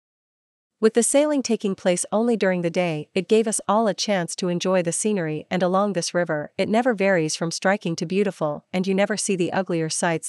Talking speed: 215 wpm